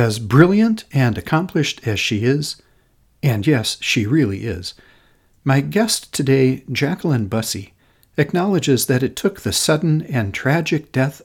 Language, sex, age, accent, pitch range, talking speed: English, male, 60-79, American, 110-150 Hz, 140 wpm